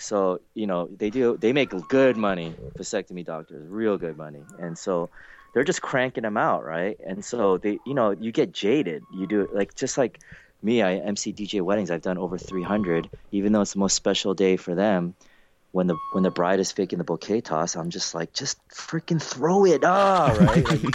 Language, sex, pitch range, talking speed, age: English, male, 90-125 Hz, 215 wpm, 30-49